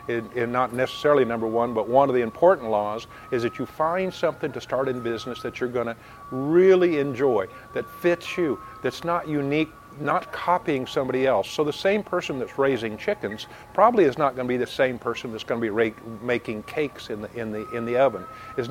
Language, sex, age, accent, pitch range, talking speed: English, male, 50-69, American, 120-160 Hz, 210 wpm